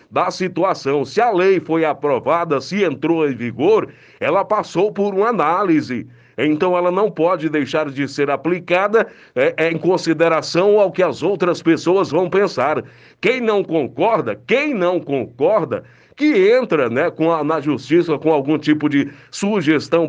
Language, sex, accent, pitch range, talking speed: Portuguese, male, Brazilian, 155-195 Hz, 145 wpm